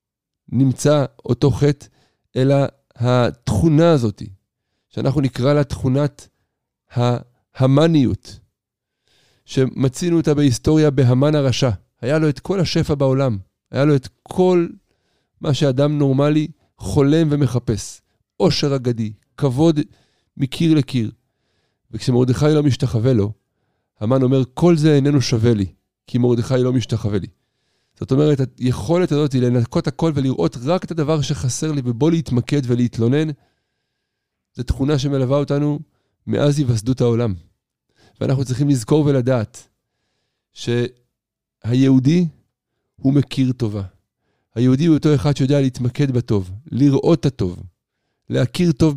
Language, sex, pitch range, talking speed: Hebrew, male, 120-145 Hz, 115 wpm